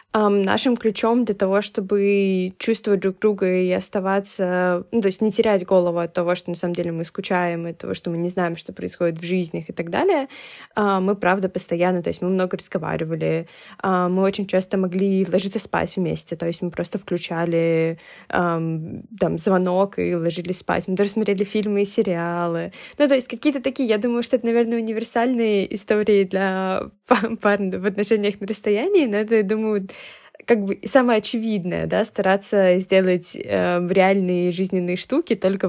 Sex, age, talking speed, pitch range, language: female, 20-39, 180 wpm, 180-215 Hz, Russian